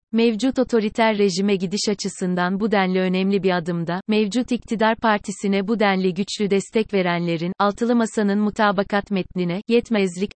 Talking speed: 135 wpm